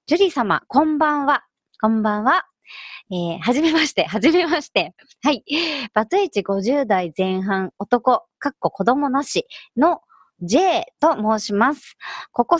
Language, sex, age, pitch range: Japanese, male, 30-49, 195-295 Hz